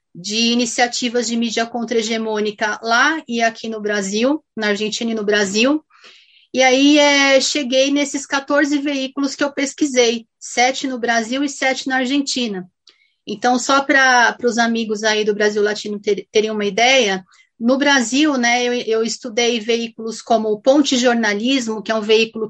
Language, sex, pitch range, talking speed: Portuguese, female, 210-255 Hz, 160 wpm